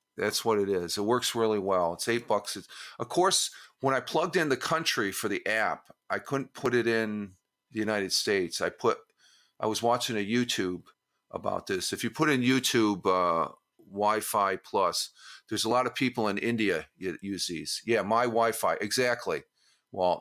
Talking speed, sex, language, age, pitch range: 185 wpm, male, English, 50-69, 100-125 Hz